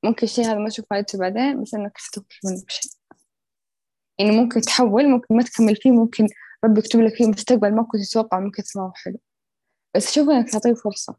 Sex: female